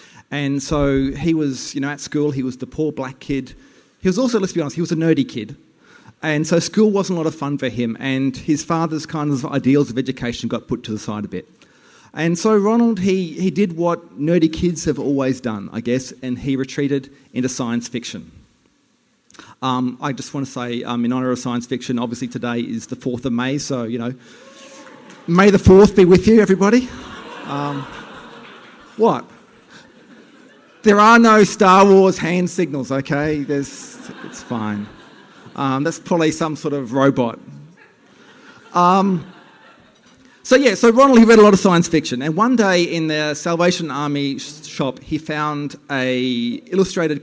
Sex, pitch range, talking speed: male, 130-180 Hz, 185 wpm